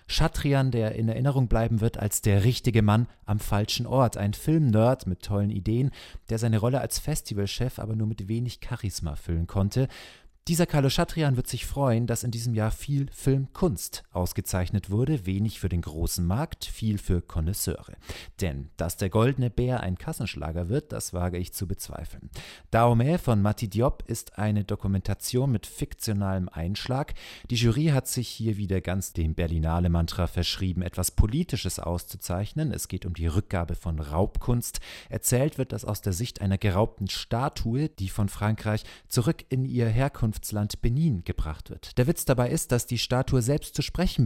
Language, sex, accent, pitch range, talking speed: German, male, German, 95-125 Hz, 170 wpm